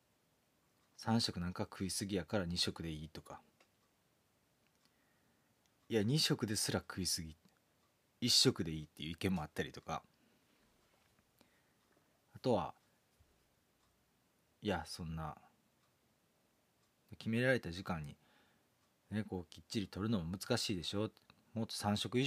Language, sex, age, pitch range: Japanese, male, 40-59, 85-115 Hz